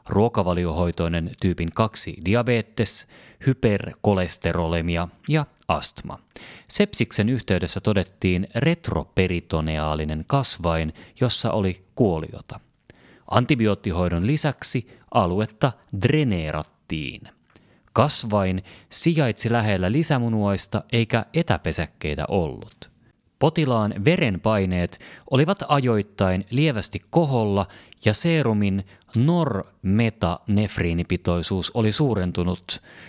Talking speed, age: 65 wpm, 30-49